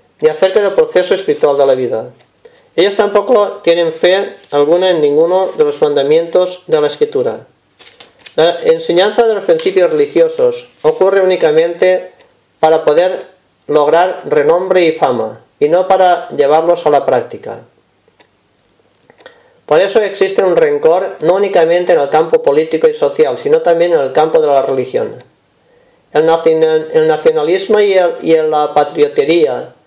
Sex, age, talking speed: male, 40-59, 140 wpm